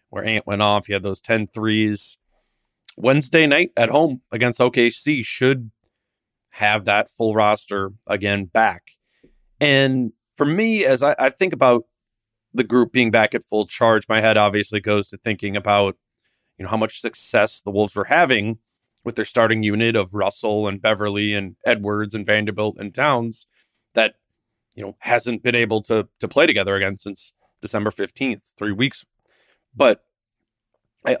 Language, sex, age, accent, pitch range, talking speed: English, male, 30-49, American, 105-120 Hz, 165 wpm